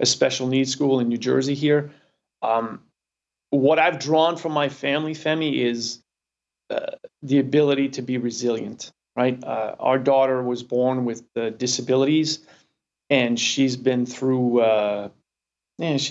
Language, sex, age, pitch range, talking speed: English, male, 40-59, 125-145 Hz, 140 wpm